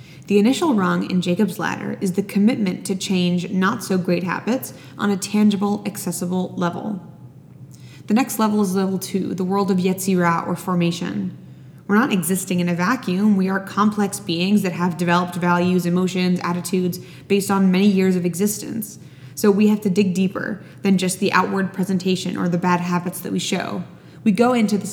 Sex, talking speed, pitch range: female, 180 wpm, 180-210 Hz